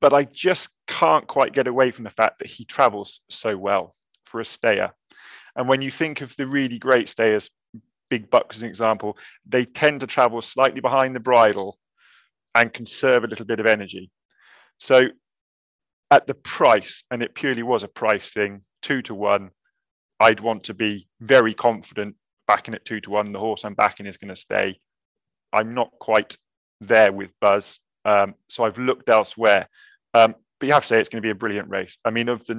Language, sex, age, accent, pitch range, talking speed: English, male, 30-49, British, 105-125 Hz, 200 wpm